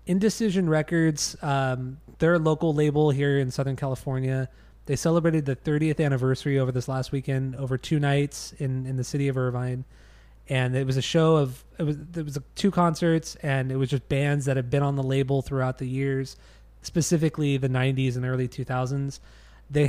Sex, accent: male, American